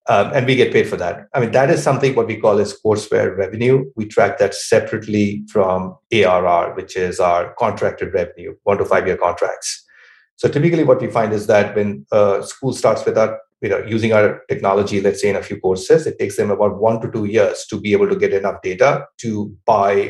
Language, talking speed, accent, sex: English, 225 wpm, Indian, male